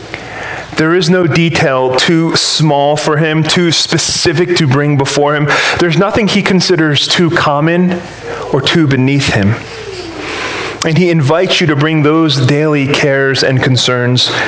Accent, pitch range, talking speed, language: American, 150-190 Hz, 145 wpm, English